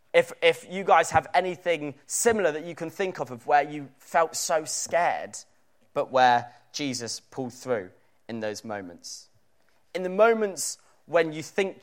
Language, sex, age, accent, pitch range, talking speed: English, male, 20-39, British, 140-225 Hz, 160 wpm